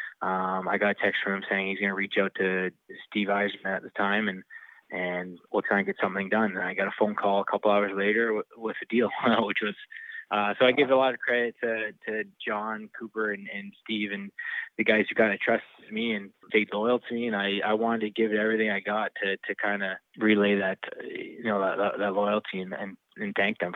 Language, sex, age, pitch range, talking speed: English, male, 20-39, 100-115 Hz, 240 wpm